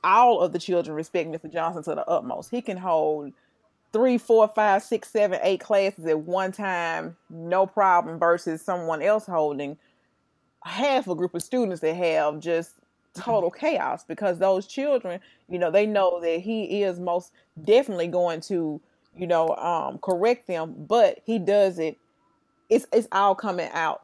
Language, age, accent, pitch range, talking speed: English, 30-49, American, 165-205 Hz, 165 wpm